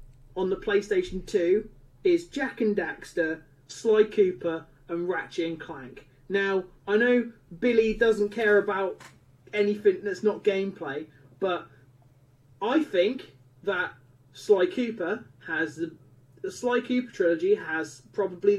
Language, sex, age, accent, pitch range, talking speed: English, male, 30-49, British, 165-255 Hz, 125 wpm